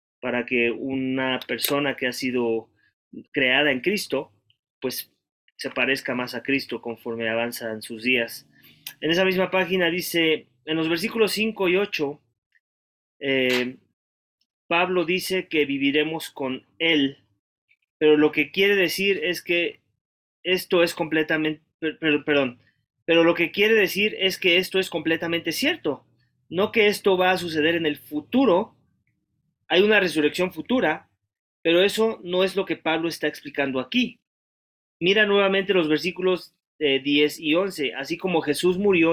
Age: 30-49